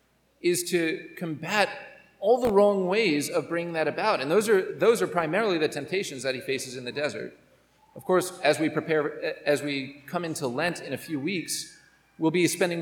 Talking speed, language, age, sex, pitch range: 195 wpm, English, 40-59, male, 150-200 Hz